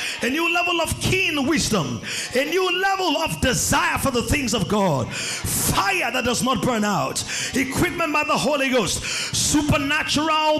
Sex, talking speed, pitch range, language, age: male, 160 wpm, 245-310 Hz, English, 30-49